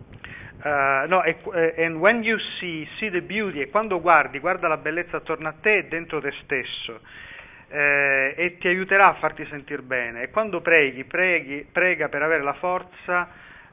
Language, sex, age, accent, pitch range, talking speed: Italian, male, 40-59, native, 135-170 Hz, 165 wpm